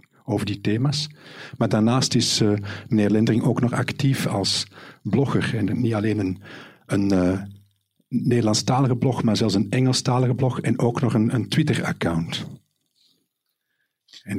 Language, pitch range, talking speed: Dutch, 100-125 Hz, 140 wpm